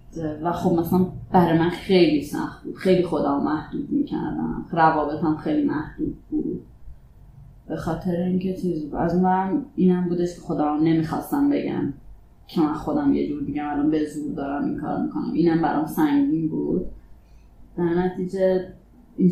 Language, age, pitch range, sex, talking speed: Persian, 20-39, 155-190 Hz, female, 145 wpm